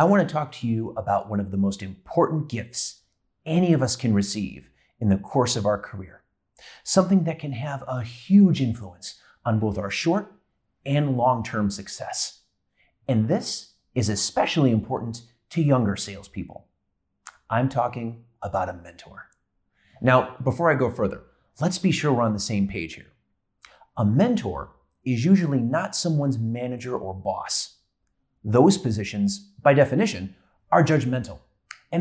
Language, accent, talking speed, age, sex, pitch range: English, American, 150 wpm, 30-49, male, 105-155 Hz